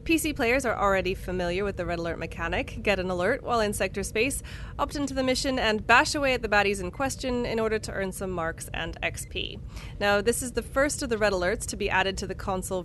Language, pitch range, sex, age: English, 190-250 Hz, female, 30-49